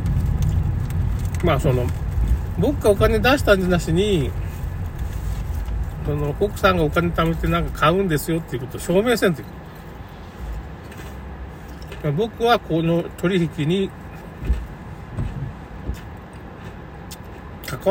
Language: Japanese